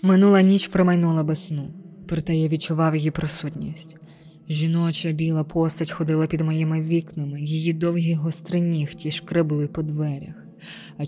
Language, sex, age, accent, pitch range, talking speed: Ukrainian, female, 20-39, native, 160-180 Hz, 135 wpm